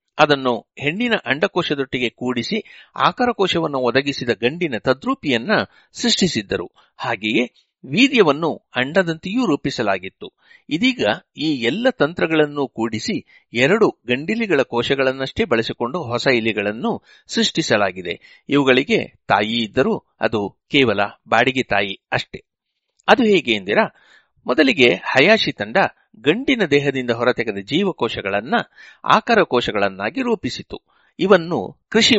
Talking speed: 90 wpm